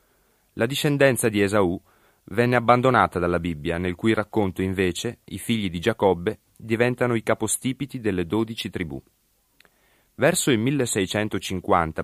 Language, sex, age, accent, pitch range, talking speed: Italian, male, 30-49, native, 90-115 Hz, 125 wpm